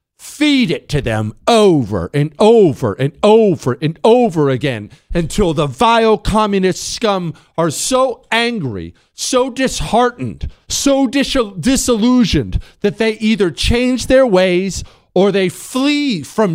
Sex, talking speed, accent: male, 125 wpm, American